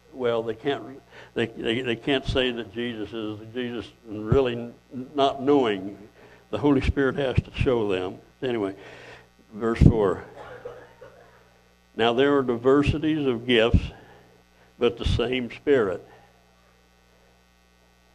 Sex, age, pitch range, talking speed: male, 60-79, 95-125 Hz, 120 wpm